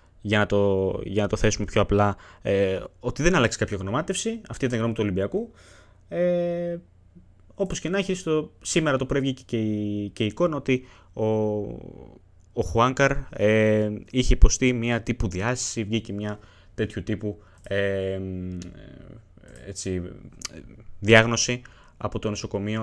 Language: Greek